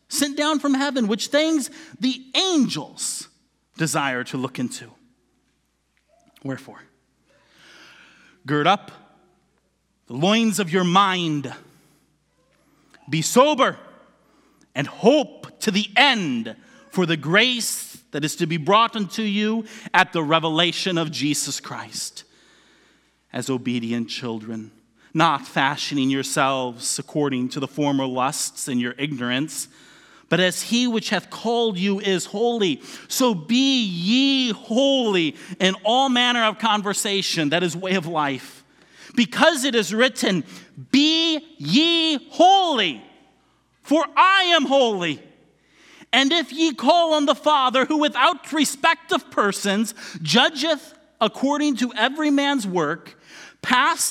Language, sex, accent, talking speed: English, male, American, 120 wpm